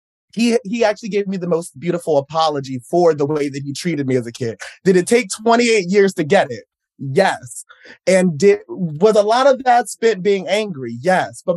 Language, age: English, 30-49